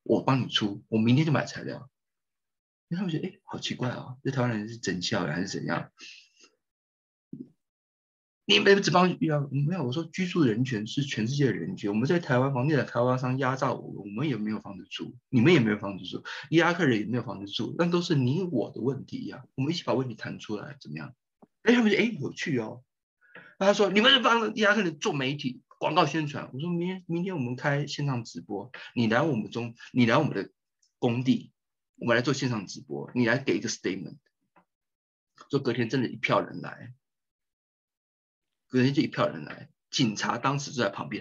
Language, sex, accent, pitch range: Chinese, male, native, 115-160 Hz